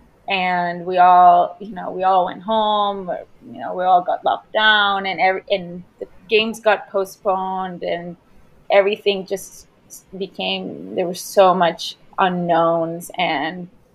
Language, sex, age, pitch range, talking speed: English, female, 20-39, 180-205 Hz, 145 wpm